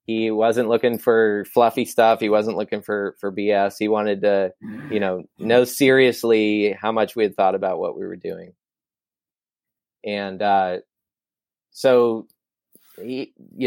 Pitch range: 100-125 Hz